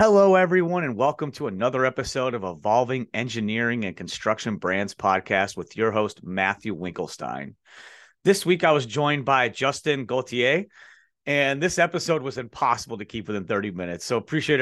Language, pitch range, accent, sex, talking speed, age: English, 120-140 Hz, American, male, 160 wpm, 30-49